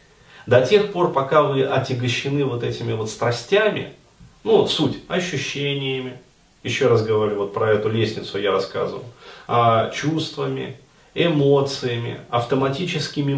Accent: native